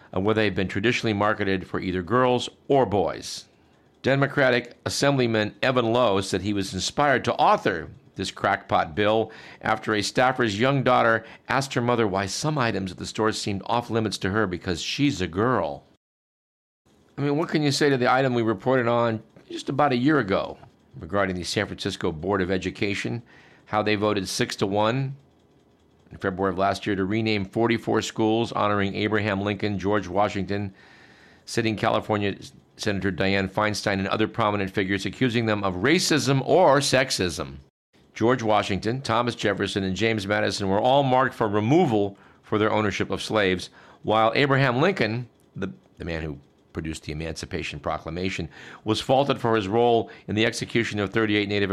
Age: 50-69